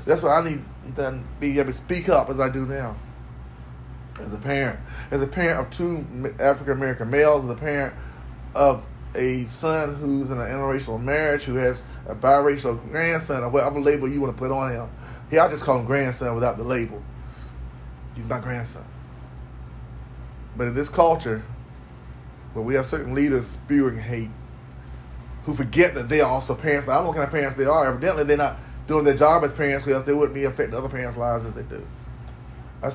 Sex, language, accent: male, English, American